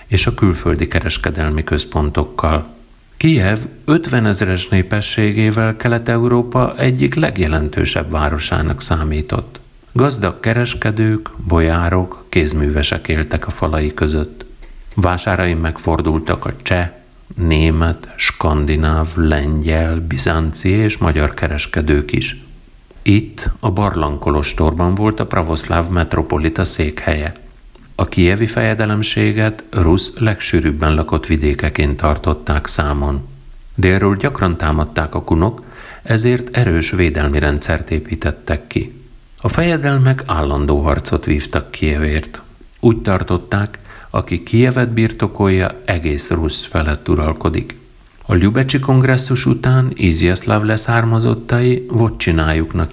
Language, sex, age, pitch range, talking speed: Hungarian, male, 50-69, 80-110 Hz, 95 wpm